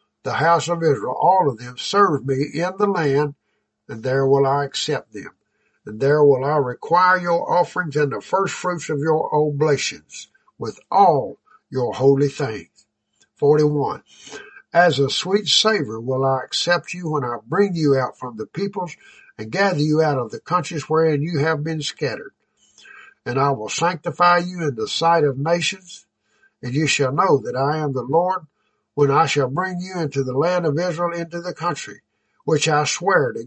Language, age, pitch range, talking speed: English, 60-79, 135-175 Hz, 185 wpm